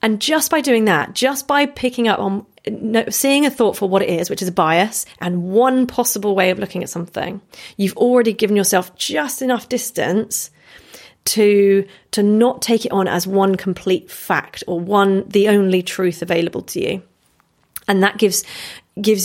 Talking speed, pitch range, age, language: 180 wpm, 180-215 Hz, 30-49, English